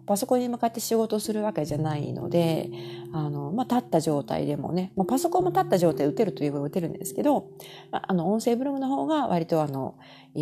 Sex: female